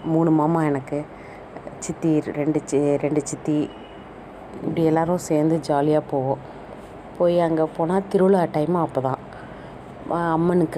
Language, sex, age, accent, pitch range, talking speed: Tamil, female, 30-49, native, 150-165 Hz, 115 wpm